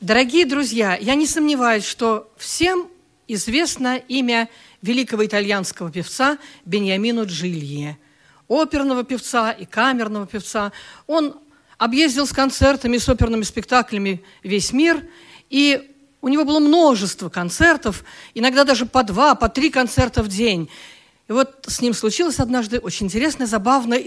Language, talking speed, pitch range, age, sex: Russian, 130 wpm, 205-295 Hz, 50-69, female